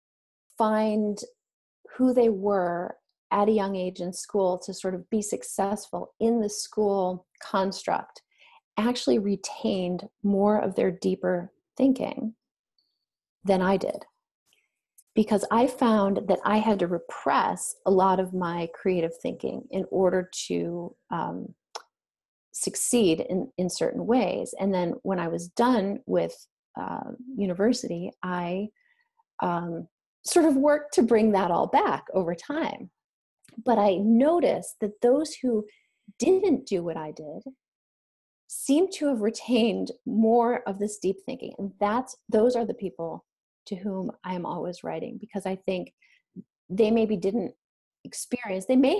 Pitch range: 185-240 Hz